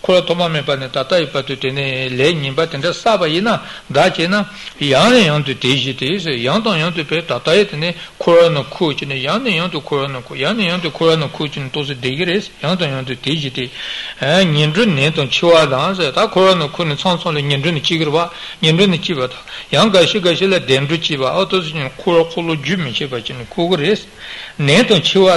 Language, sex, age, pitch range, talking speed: Italian, male, 60-79, 145-185 Hz, 65 wpm